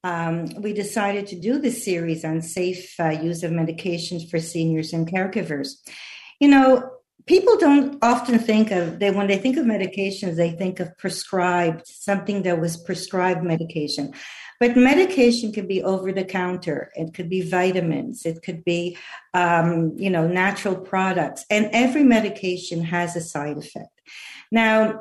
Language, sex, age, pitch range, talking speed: English, female, 50-69, 175-220 Hz, 160 wpm